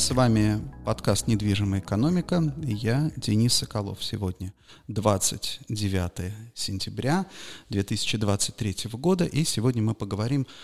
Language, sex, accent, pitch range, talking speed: Russian, male, native, 105-135 Hz, 100 wpm